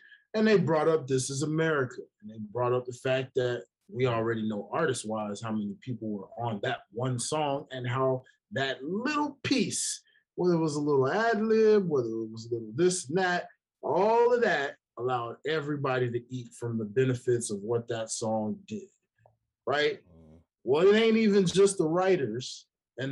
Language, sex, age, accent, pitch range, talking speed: English, male, 20-39, American, 120-185 Hz, 180 wpm